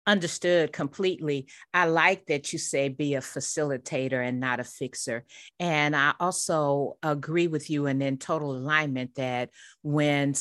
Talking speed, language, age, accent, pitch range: 150 wpm, English, 40-59, American, 135-180 Hz